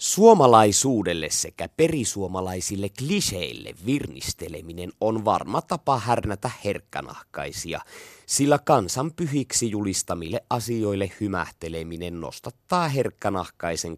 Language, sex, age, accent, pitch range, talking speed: Finnish, male, 30-49, native, 90-120 Hz, 75 wpm